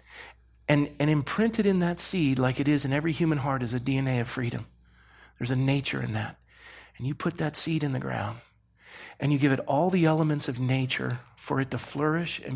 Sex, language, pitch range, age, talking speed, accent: male, English, 110-165 Hz, 40-59, 215 wpm, American